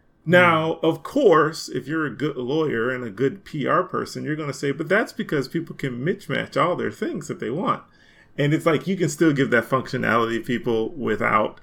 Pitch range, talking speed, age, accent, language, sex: 135-175 Hz, 215 wpm, 30-49, American, English, male